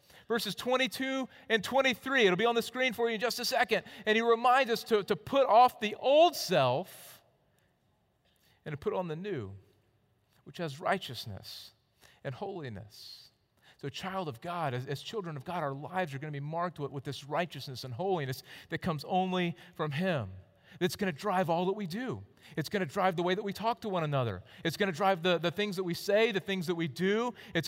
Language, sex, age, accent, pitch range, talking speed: English, male, 40-59, American, 145-205 Hz, 220 wpm